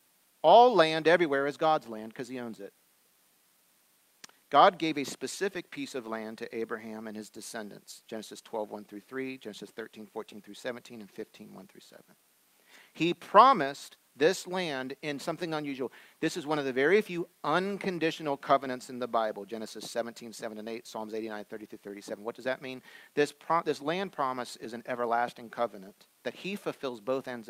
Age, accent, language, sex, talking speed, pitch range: 50-69, American, English, male, 160 wpm, 115-145 Hz